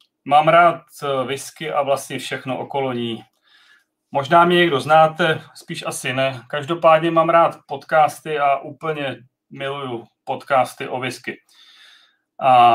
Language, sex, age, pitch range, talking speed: Czech, male, 30-49, 135-165 Hz, 120 wpm